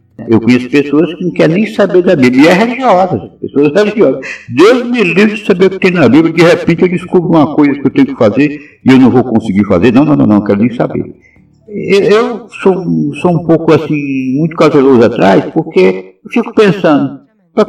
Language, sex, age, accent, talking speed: Portuguese, male, 60-79, Brazilian, 215 wpm